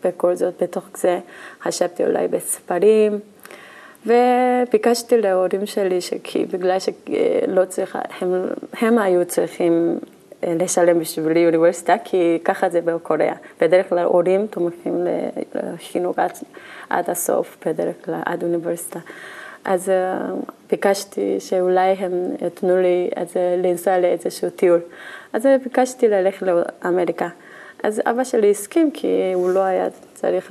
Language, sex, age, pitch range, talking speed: Hebrew, female, 20-39, 180-215 Hz, 110 wpm